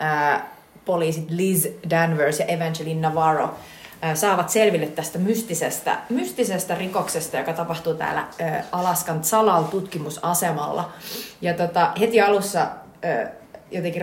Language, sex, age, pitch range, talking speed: Finnish, female, 30-49, 160-205 Hz, 110 wpm